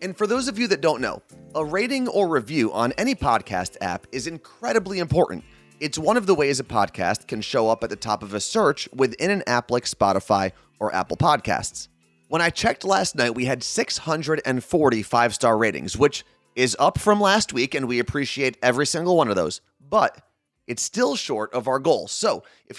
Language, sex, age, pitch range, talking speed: English, male, 30-49, 115-175 Hz, 200 wpm